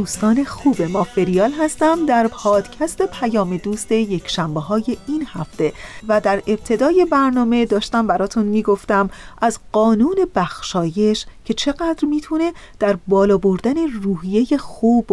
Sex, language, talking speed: female, Persian, 125 wpm